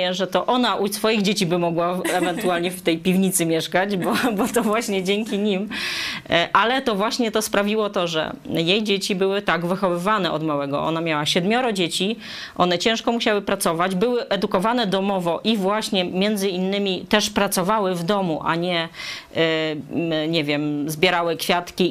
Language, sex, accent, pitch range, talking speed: Polish, female, native, 175-215 Hz, 160 wpm